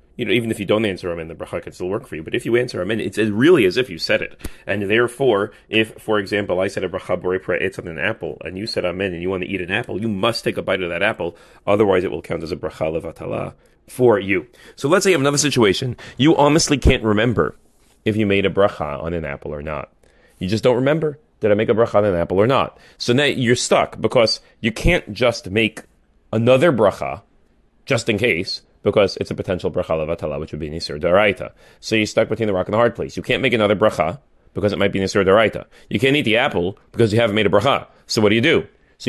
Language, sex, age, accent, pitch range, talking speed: English, male, 30-49, American, 105-140 Hz, 255 wpm